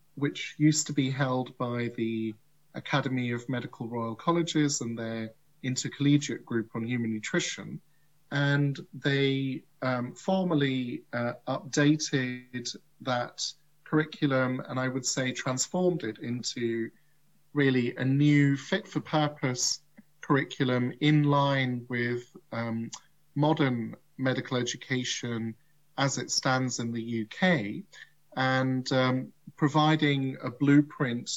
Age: 40-59